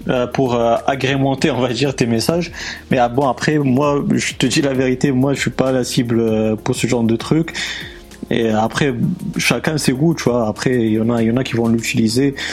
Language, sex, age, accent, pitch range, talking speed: French, male, 30-49, French, 115-140 Hz, 225 wpm